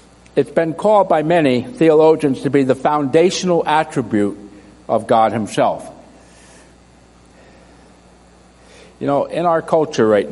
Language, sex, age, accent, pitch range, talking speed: English, male, 60-79, American, 100-135 Hz, 115 wpm